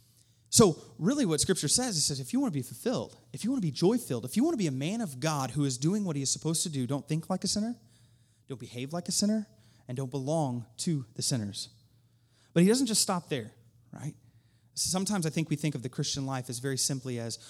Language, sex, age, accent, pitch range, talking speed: English, male, 30-49, American, 120-185 Hz, 255 wpm